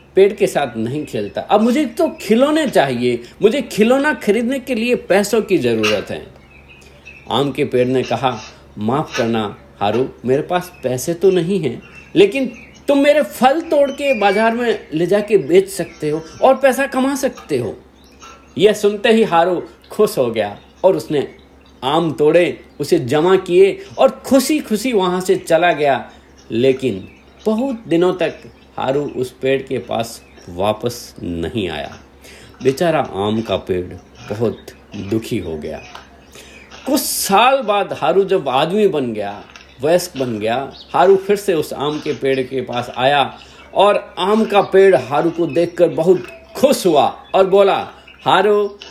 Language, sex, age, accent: Hindi, male, 50-69, native